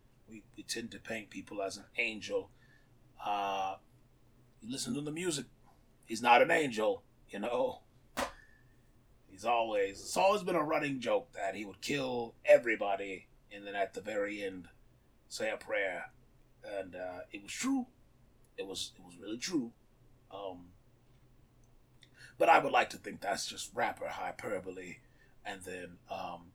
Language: English